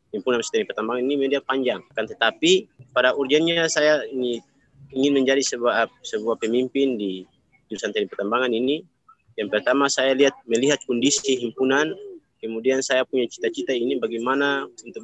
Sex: male